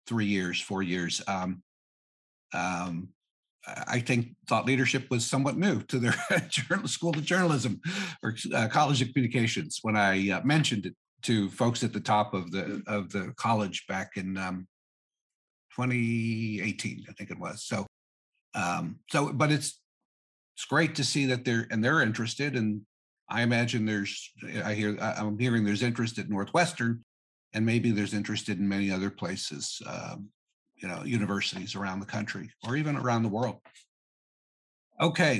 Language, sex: English, male